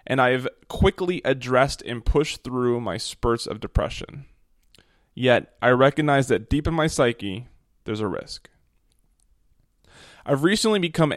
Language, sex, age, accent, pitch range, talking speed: English, male, 20-39, American, 110-140 Hz, 140 wpm